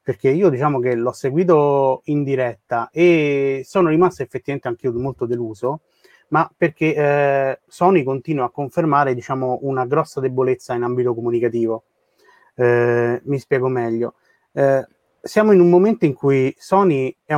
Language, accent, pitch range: Italian, native, 125-160 Hz